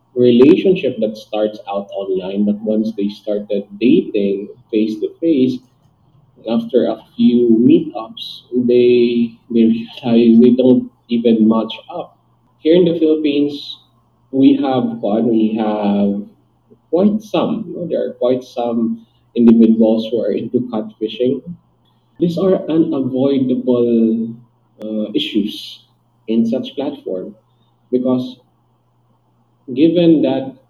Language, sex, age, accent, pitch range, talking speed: Filipino, male, 20-39, native, 115-145 Hz, 115 wpm